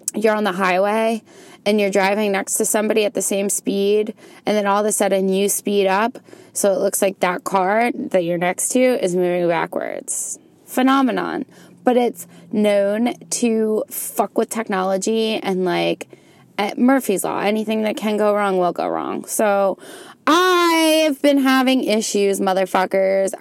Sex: female